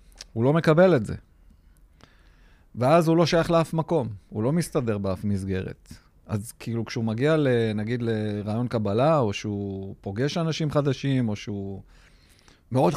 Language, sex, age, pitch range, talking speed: Hebrew, male, 50-69, 100-140 Hz, 140 wpm